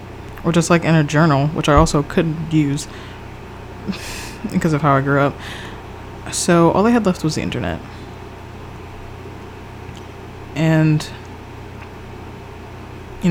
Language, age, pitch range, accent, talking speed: English, 20-39, 105-155 Hz, American, 120 wpm